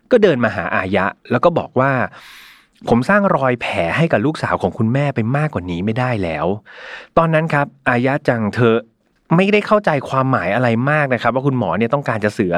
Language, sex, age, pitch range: Thai, male, 30-49, 105-145 Hz